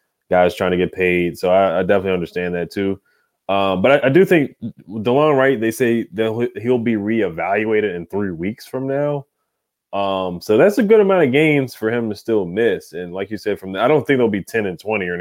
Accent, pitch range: American, 90-115 Hz